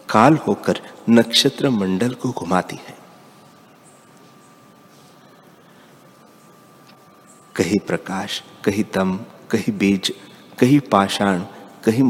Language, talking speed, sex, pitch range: Hindi, 80 wpm, male, 95-115 Hz